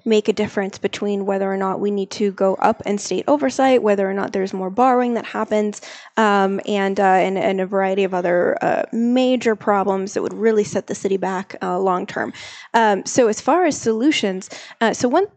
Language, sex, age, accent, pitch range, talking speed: English, female, 20-39, American, 195-230 Hz, 205 wpm